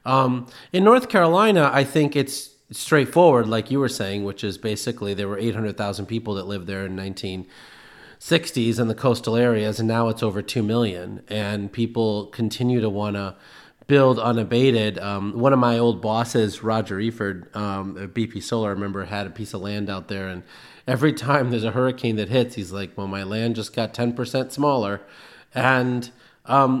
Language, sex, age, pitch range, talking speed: English, male, 30-49, 110-135 Hz, 180 wpm